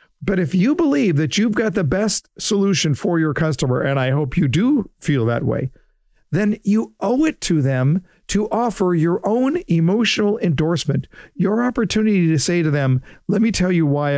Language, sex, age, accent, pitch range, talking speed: English, male, 50-69, American, 150-205 Hz, 185 wpm